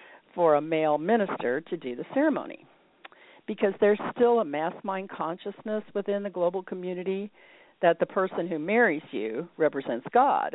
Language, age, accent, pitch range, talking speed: English, 50-69, American, 160-215 Hz, 155 wpm